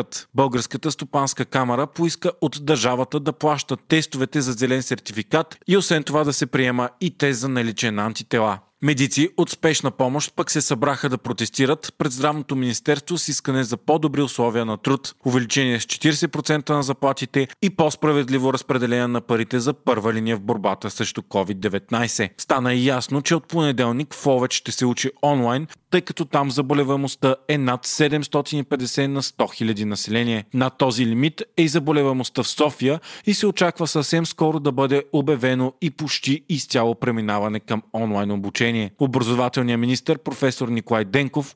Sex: male